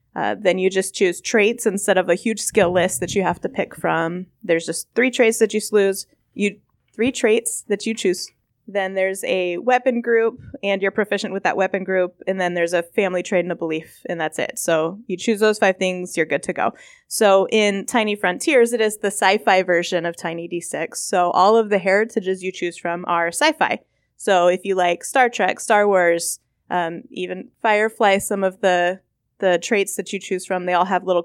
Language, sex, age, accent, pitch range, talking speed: English, female, 20-39, American, 175-225 Hz, 215 wpm